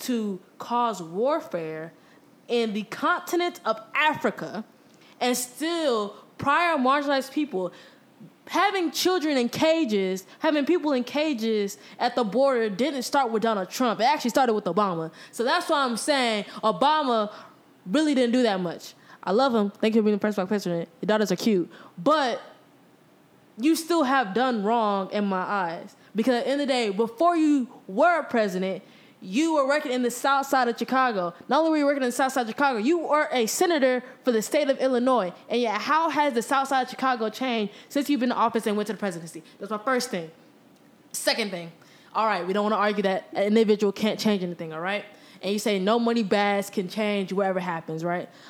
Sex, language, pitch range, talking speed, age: female, English, 200-270 Hz, 200 wpm, 20-39